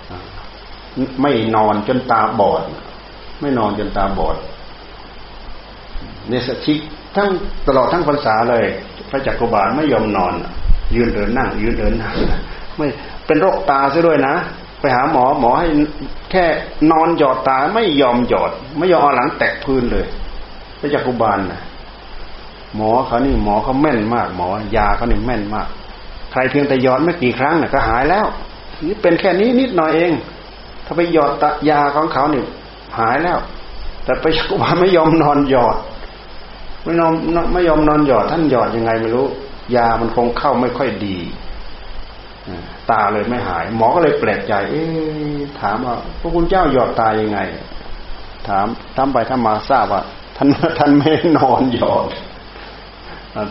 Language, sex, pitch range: Thai, male, 110-150 Hz